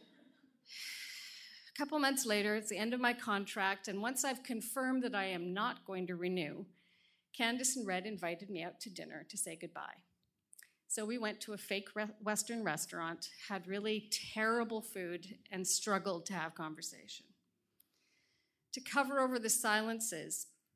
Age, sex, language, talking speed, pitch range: 40-59, female, English, 155 wpm, 190-250 Hz